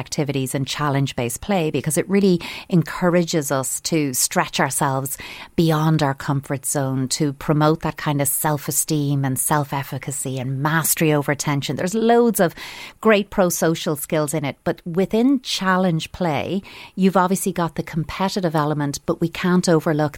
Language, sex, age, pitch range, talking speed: English, female, 40-59, 145-175 Hz, 150 wpm